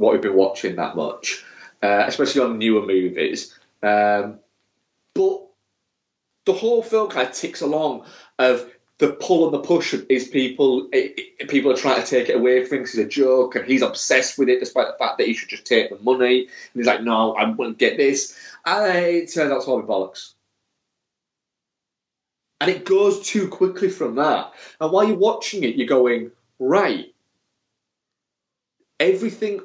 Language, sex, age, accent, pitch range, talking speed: English, male, 30-49, British, 125-205 Hz, 180 wpm